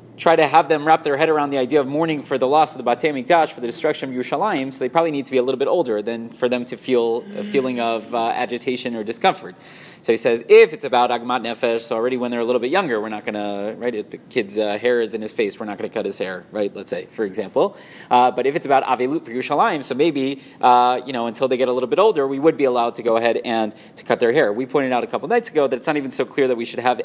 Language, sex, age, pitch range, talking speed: English, male, 30-49, 120-145 Hz, 305 wpm